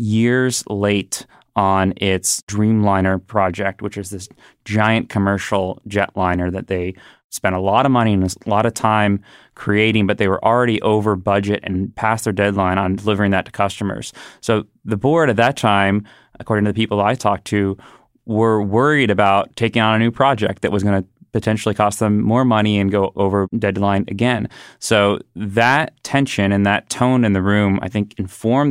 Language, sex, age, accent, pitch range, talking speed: English, male, 20-39, American, 100-115 Hz, 180 wpm